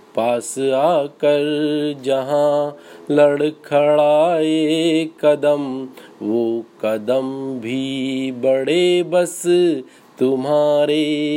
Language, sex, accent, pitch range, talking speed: Hindi, male, native, 130-150 Hz, 60 wpm